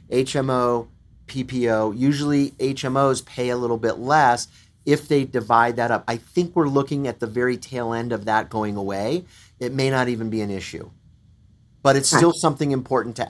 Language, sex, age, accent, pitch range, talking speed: English, male, 30-49, American, 110-135 Hz, 180 wpm